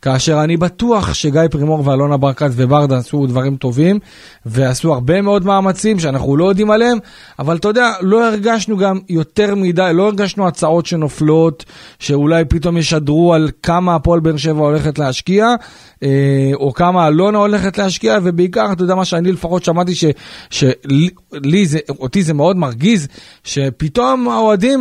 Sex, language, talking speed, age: male, Hebrew, 145 wpm, 30-49